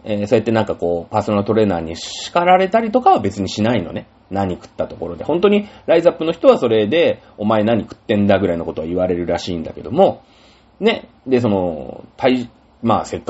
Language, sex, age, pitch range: Japanese, male, 30-49, 100-165 Hz